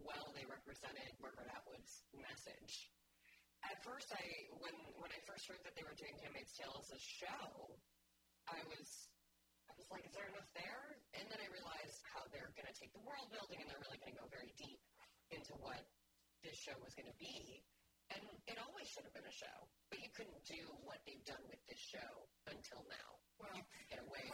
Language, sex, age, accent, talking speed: English, female, 40-59, American, 200 wpm